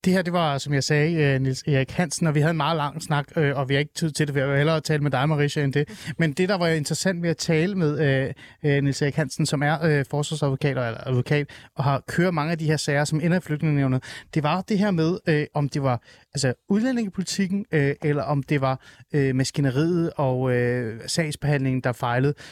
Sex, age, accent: male, 30-49, native